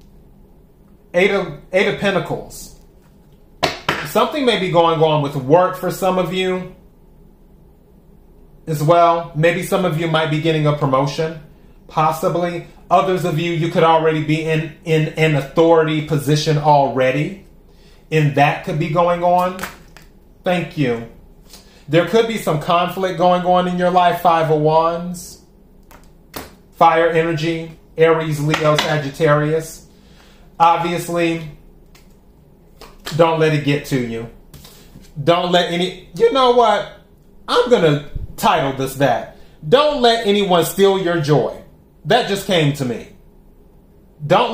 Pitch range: 155-180 Hz